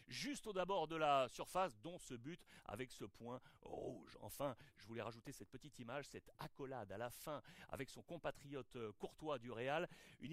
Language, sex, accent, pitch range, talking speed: French, male, French, 130-200 Hz, 185 wpm